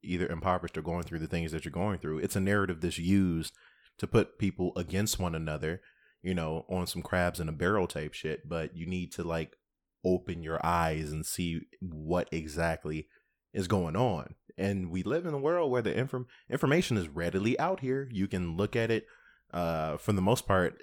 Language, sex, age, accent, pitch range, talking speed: English, male, 20-39, American, 85-110 Hz, 205 wpm